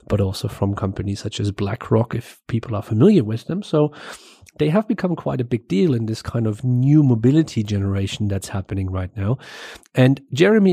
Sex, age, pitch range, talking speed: male, 40-59, 105-130 Hz, 190 wpm